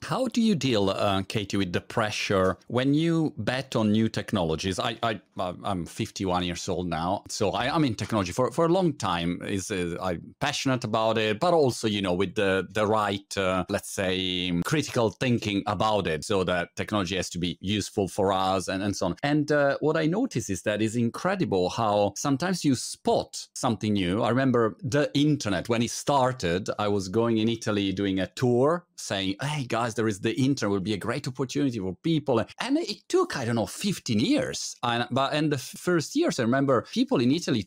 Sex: male